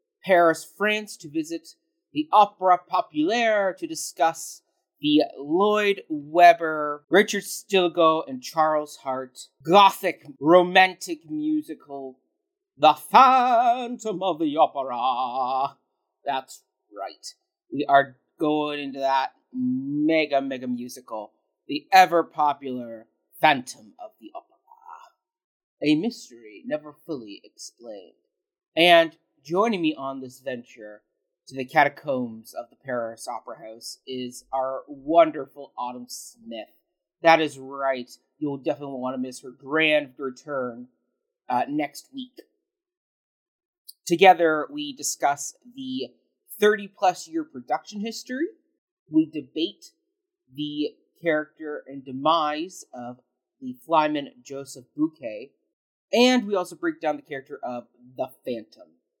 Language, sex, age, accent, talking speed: English, male, 40-59, American, 110 wpm